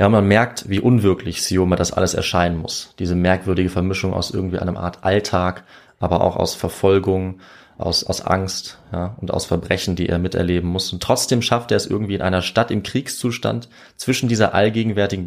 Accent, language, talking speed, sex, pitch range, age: German, German, 180 wpm, male, 90-110 Hz, 20-39